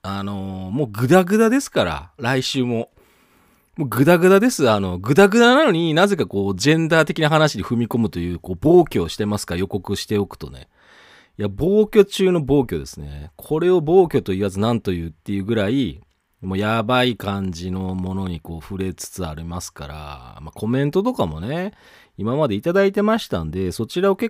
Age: 40-59